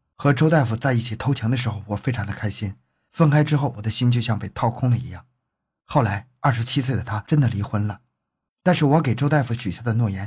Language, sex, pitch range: Chinese, male, 100-130 Hz